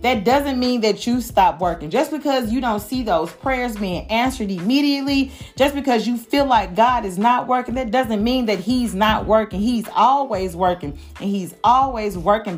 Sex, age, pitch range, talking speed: female, 40-59, 195-255 Hz, 190 wpm